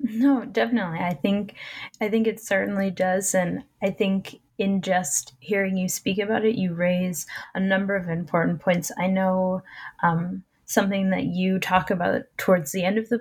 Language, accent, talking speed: English, American, 175 wpm